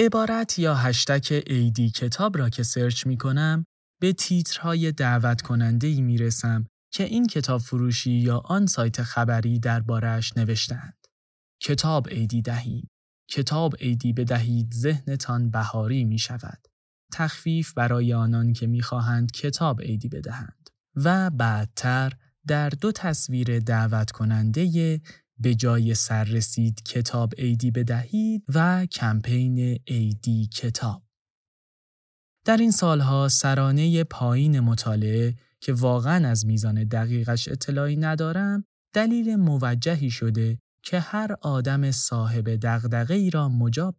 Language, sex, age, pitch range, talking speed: Persian, male, 10-29, 115-155 Hz, 115 wpm